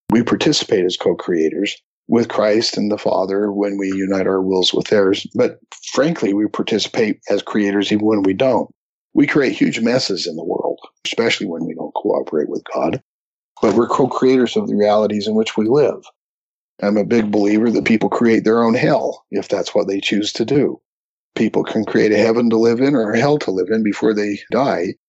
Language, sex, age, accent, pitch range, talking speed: English, male, 50-69, American, 100-115 Hz, 200 wpm